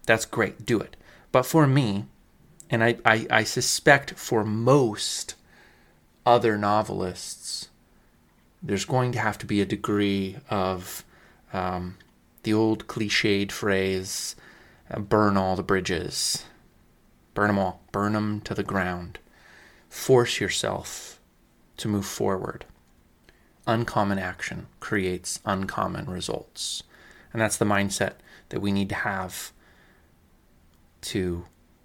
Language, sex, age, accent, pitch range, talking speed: English, male, 30-49, American, 95-110 Hz, 120 wpm